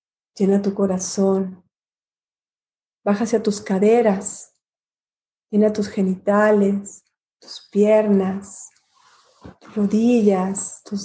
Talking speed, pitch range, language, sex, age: 80 wpm, 200-235 Hz, Spanish, female, 40-59